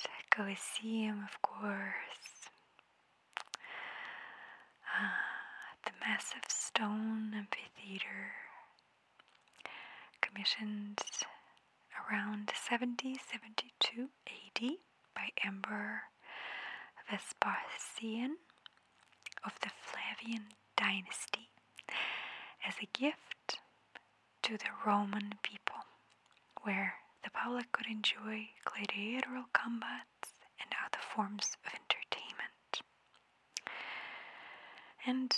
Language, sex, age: English, female, 20-39